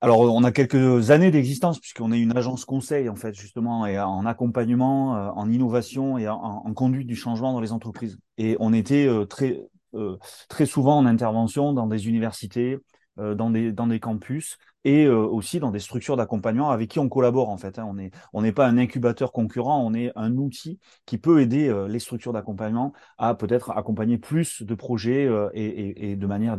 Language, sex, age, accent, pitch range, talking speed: French, male, 30-49, French, 110-130 Hz, 190 wpm